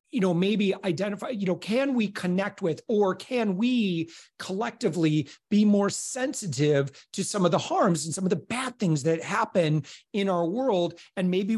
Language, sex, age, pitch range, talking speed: English, male, 40-59, 165-210 Hz, 180 wpm